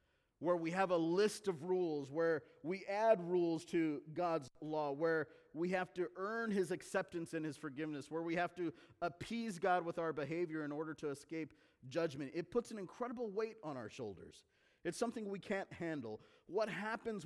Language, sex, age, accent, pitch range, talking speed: English, male, 40-59, American, 160-205 Hz, 185 wpm